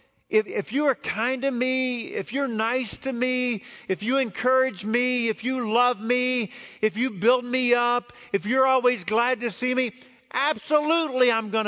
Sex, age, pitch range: male, 50-69, 160-235 Hz